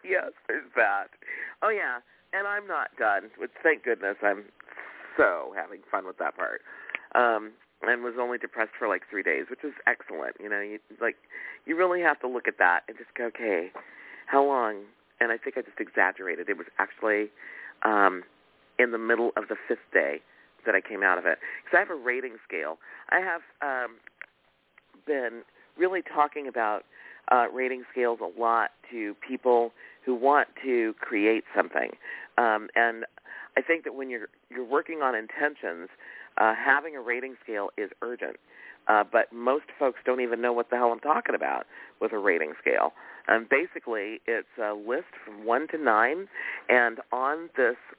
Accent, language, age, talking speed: American, English, 40-59, 180 wpm